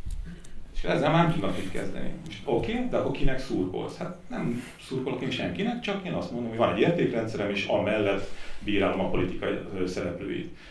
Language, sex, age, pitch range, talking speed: Hungarian, male, 40-59, 90-105 Hz, 175 wpm